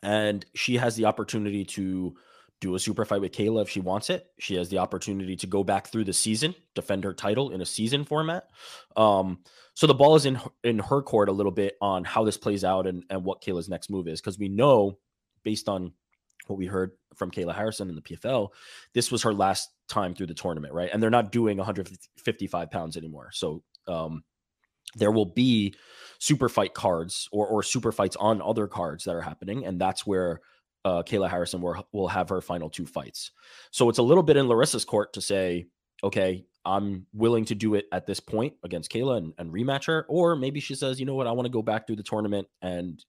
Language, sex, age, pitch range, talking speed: English, male, 20-39, 90-110 Hz, 225 wpm